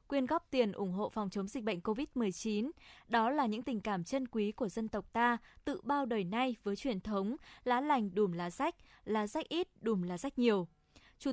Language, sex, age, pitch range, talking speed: Vietnamese, female, 20-39, 215-275 Hz, 215 wpm